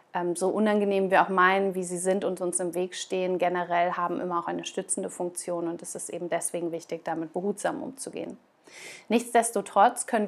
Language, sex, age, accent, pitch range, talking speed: German, female, 30-49, German, 175-225 Hz, 180 wpm